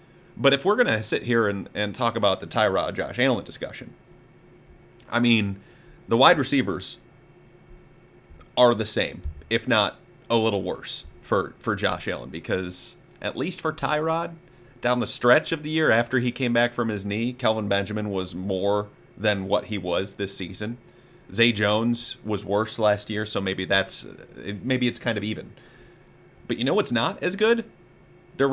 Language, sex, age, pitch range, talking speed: English, male, 30-49, 105-145 Hz, 175 wpm